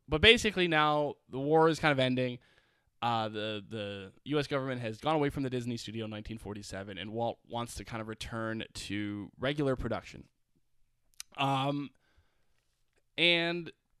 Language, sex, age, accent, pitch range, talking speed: English, male, 20-39, American, 105-135 Hz, 150 wpm